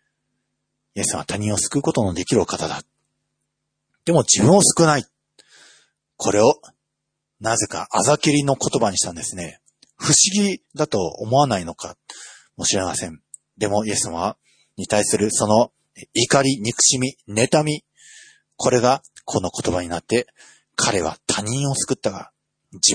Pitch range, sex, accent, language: 105-155 Hz, male, native, Japanese